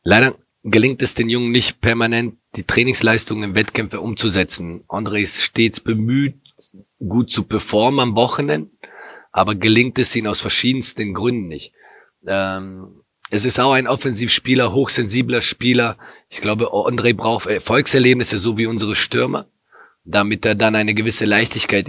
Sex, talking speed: male, 145 wpm